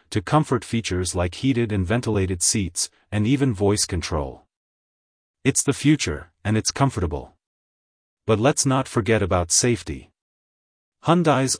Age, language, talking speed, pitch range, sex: 40-59, English, 130 wpm, 90-120 Hz, male